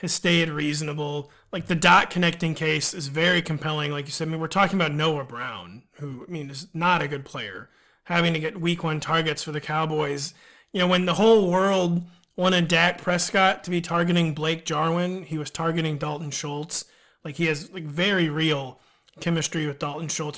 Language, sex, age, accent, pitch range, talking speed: English, male, 30-49, American, 150-185 Hz, 195 wpm